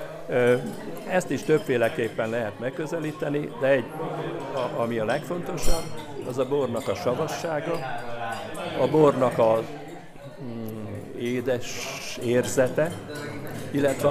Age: 60-79